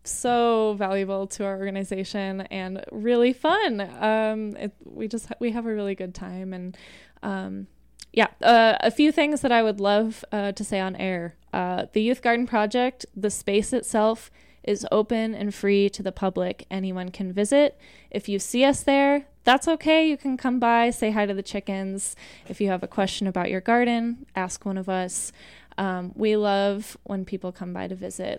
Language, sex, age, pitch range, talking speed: English, female, 10-29, 190-230 Hz, 190 wpm